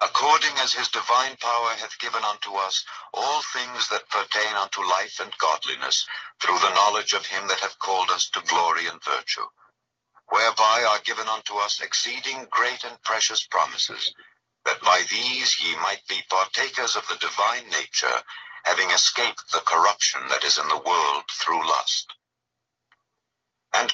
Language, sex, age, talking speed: English, male, 60-79, 160 wpm